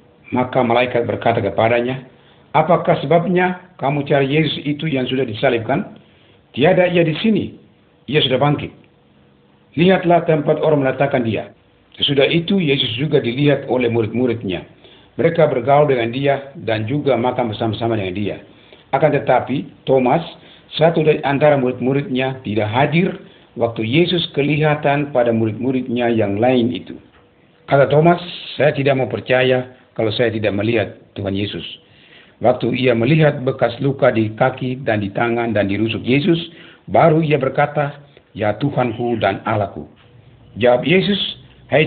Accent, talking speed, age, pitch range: native, 135 wpm, 50-69, 115-150 Hz